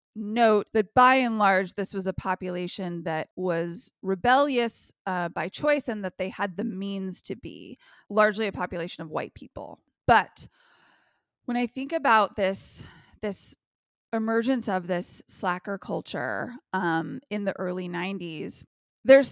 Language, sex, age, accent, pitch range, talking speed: English, female, 20-39, American, 185-225 Hz, 145 wpm